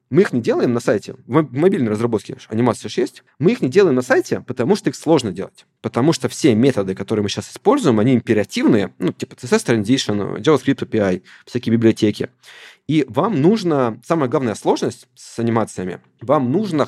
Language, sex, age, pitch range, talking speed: Russian, male, 20-39, 115-140 Hz, 180 wpm